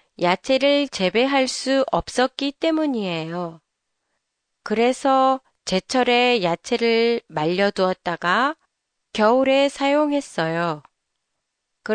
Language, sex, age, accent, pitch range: Japanese, female, 30-49, Korean, 190-270 Hz